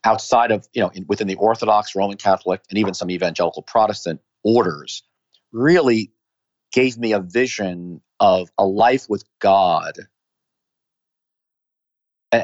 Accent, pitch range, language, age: American, 95-115 Hz, English, 40-59